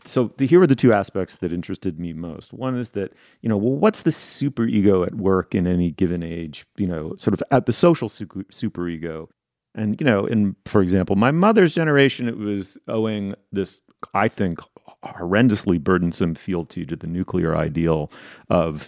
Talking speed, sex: 180 wpm, male